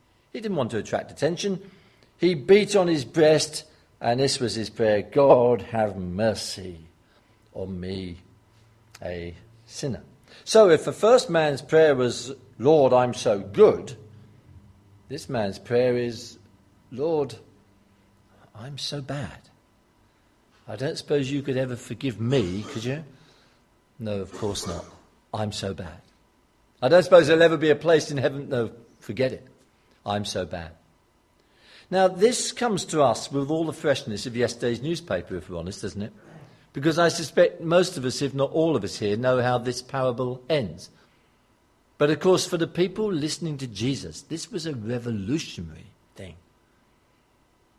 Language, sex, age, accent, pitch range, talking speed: English, male, 50-69, British, 105-150 Hz, 155 wpm